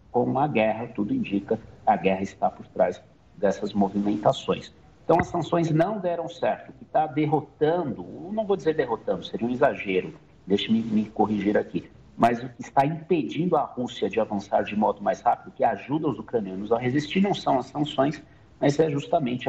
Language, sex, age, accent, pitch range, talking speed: Portuguese, male, 50-69, Brazilian, 110-150 Hz, 180 wpm